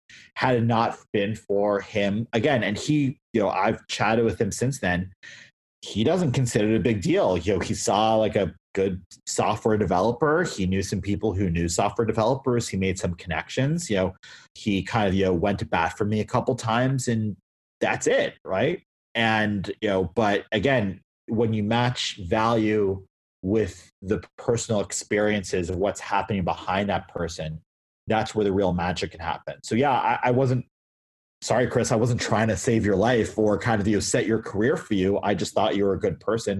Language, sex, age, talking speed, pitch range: English, male, 30-49, 200 wpm, 95-115 Hz